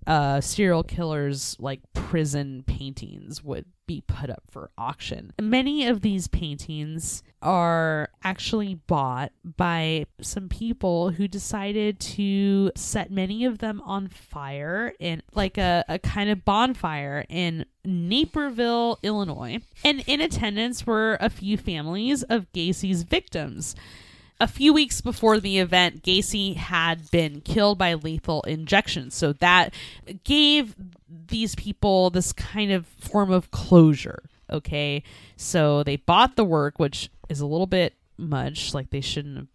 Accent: American